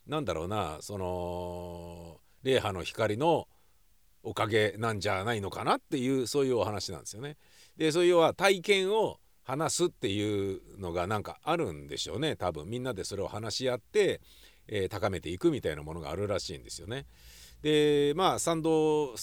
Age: 50-69